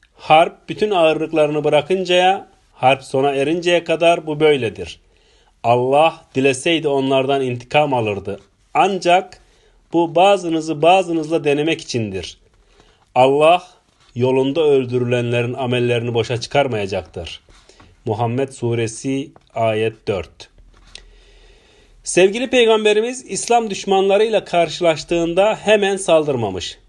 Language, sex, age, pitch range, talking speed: Turkish, male, 40-59, 125-170 Hz, 85 wpm